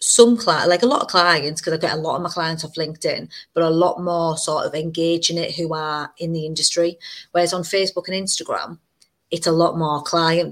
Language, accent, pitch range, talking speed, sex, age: English, British, 155-175 Hz, 230 wpm, female, 30-49